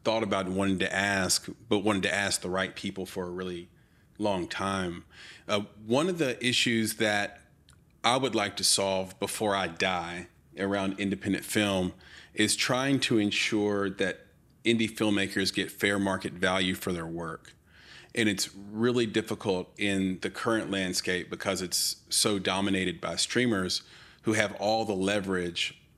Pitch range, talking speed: 90-105 Hz, 155 wpm